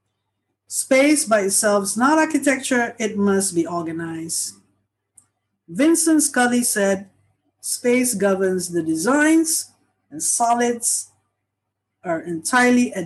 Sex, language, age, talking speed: female, English, 50-69, 100 wpm